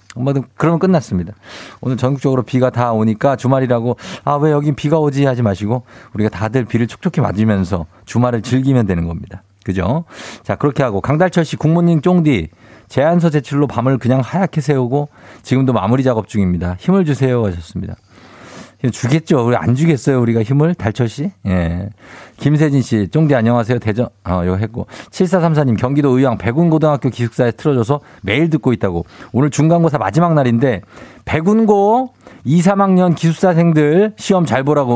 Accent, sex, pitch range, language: native, male, 120-175 Hz, Korean